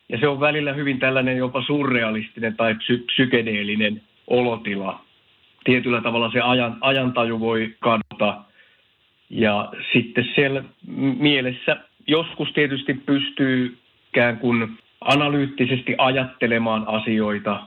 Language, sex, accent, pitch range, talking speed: Finnish, male, native, 105-125 Hz, 100 wpm